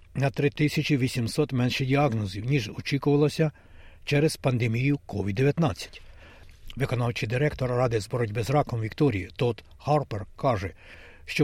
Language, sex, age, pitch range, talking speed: Ukrainian, male, 60-79, 115-145 Hz, 110 wpm